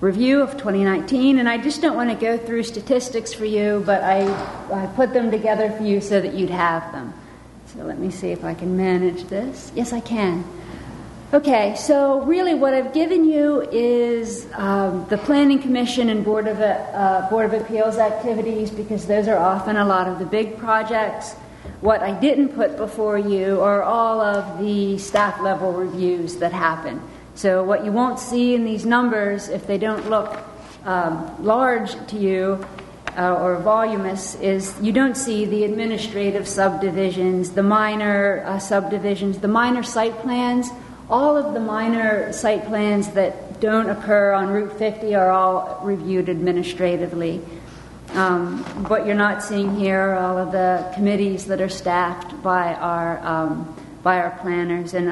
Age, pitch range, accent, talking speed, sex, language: 40-59, 185-225 Hz, American, 165 wpm, female, English